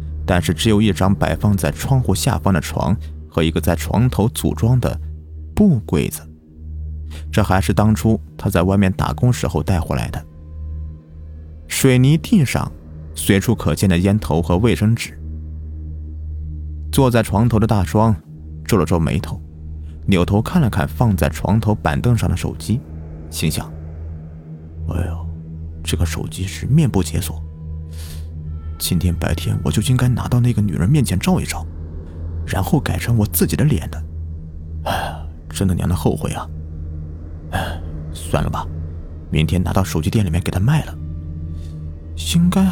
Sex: male